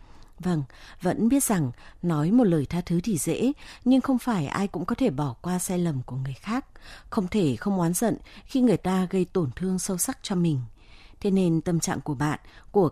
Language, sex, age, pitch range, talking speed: Vietnamese, female, 20-39, 145-200 Hz, 220 wpm